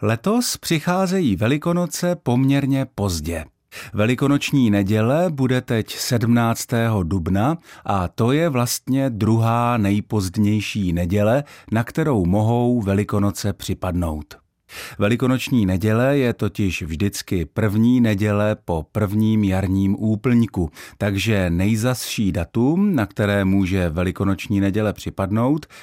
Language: Czech